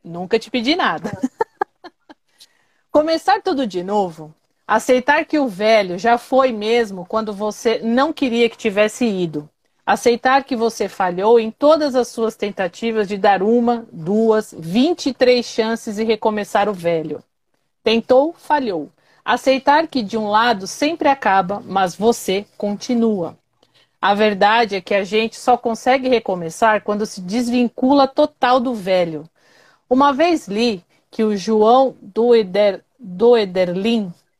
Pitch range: 195-255 Hz